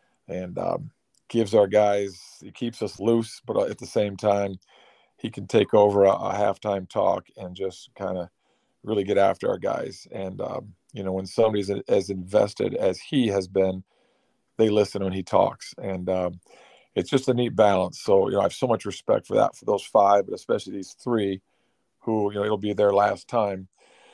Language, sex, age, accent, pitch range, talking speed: English, male, 40-59, American, 95-105 Hz, 200 wpm